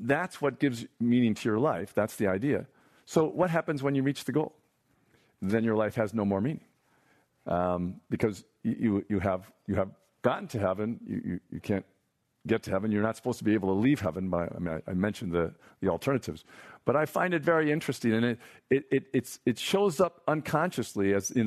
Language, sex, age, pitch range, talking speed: English, male, 50-69, 110-145 Hz, 210 wpm